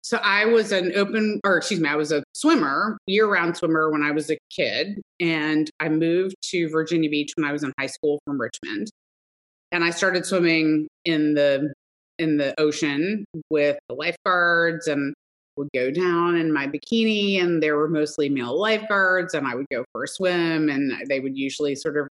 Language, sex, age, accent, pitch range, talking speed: English, female, 30-49, American, 140-175 Hz, 195 wpm